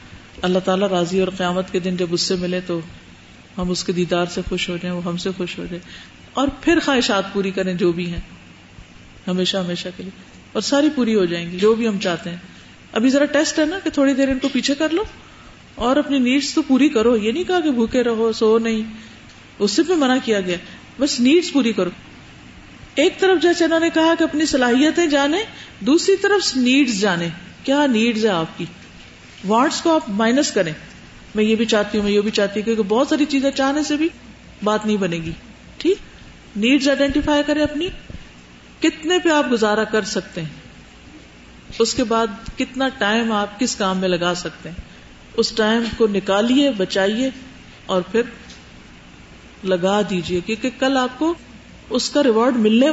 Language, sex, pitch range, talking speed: Urdu, female, 180-275 Hz, 195 wpm